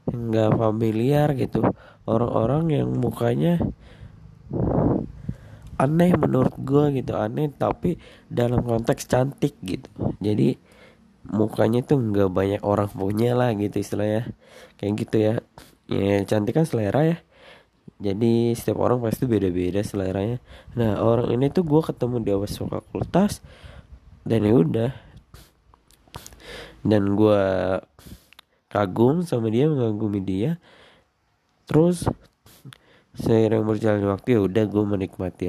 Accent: native